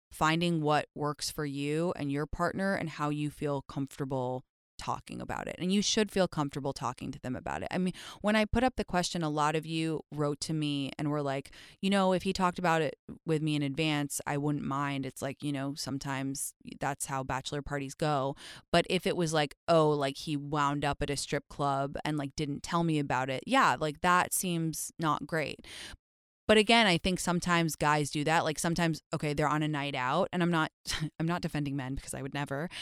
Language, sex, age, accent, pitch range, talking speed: English, female, 20-39, American, 145-180 Hz, 225 wpm